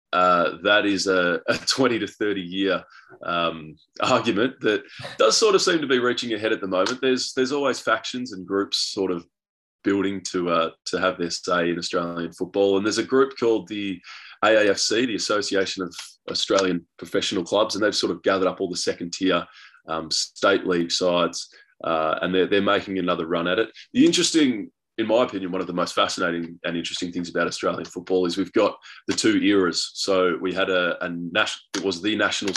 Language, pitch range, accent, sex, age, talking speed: English, 85-100 Hz, Australian, male, 20-39, 205 wpm